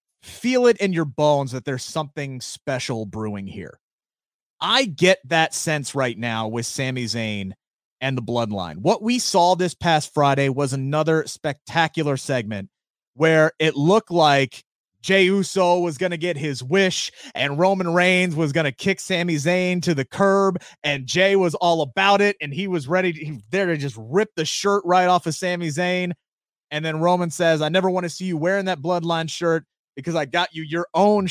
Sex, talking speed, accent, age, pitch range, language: male, 190 wpm, American, 30-49, 145-185 Hz, English